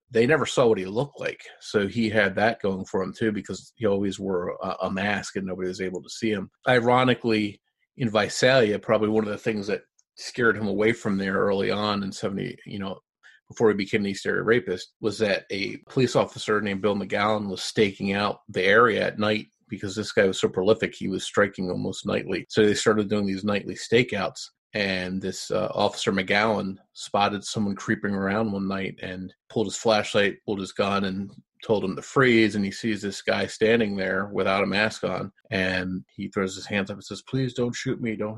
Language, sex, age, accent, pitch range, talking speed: English, male, 30-49, American, 95-110 Hz, 210 wpm